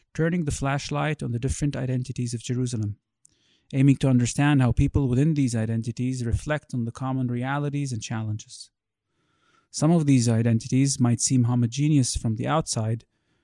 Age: 30-49